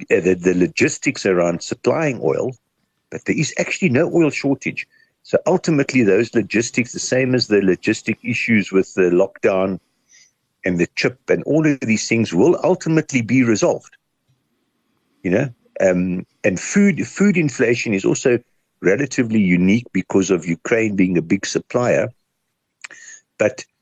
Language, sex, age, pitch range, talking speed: English, male, 60-79, 95-130 Hz, 145 wpm